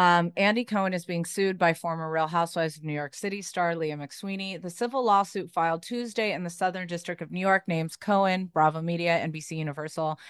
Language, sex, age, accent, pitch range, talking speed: English, female, 30-49, American, 160-195 Hz, 205 wpm